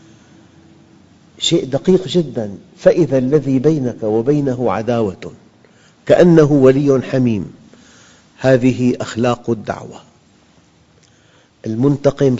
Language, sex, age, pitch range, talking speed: Arabic, male, 50-69, 110-140 Hz, 75 wpm